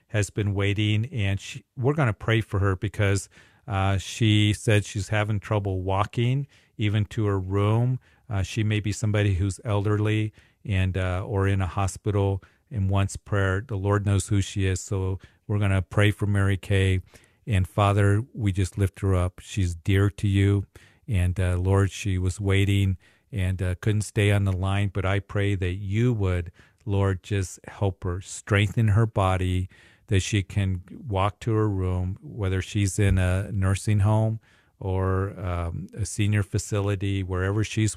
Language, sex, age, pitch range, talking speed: English, male, 50-69, 95-105 Hz, 175 wpm